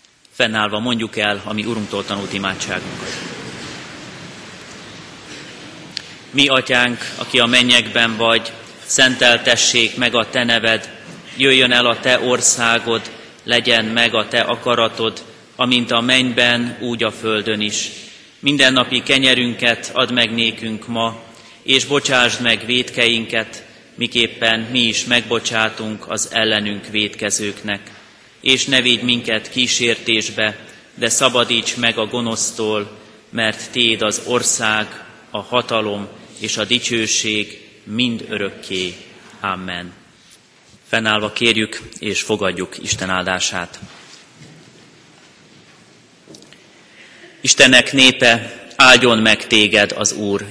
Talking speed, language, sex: 100 wpm, Hungarian, male